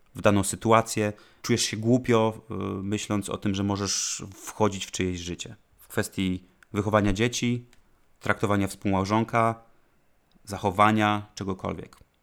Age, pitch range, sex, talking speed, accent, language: 30-49, 105-120 Hz, male, 115 wpm, native, Polish